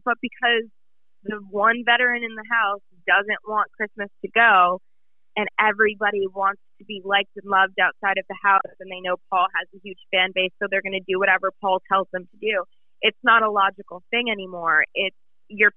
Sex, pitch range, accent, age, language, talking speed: female, 180-210 Hz, American, 20-39, English, 200 wpm